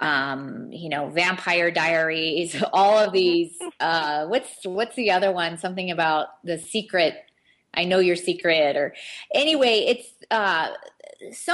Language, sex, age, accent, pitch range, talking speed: English, female, 30-49, American, 170-215 Hz, 140 wpm